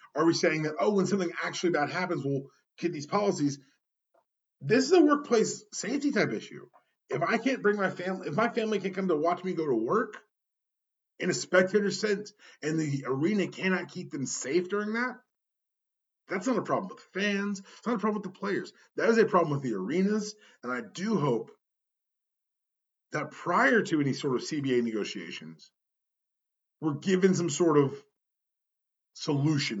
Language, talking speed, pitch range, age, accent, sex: English, 180 wpm, 155-200 Hz, 30-49, American, male